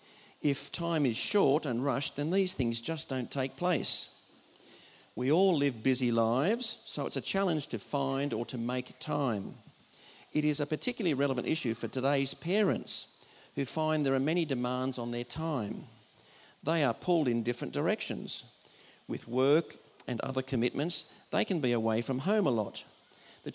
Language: English